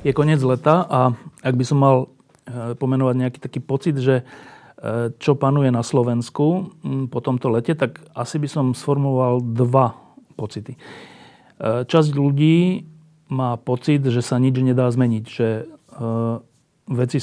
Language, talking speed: Slovak, 130 wpm